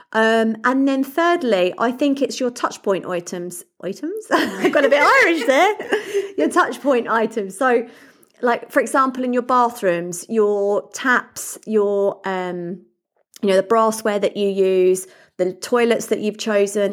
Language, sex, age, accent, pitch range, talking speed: English, female, 30-49, British, 190-255 Hz, 160 wpm